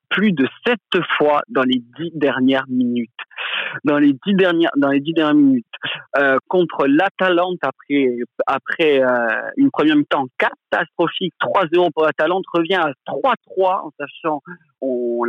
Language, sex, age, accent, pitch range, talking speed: French, male, 40-59, French, 135-185 Hz, 145 wpm